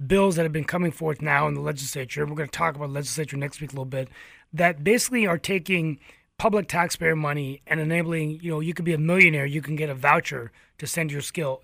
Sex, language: male, English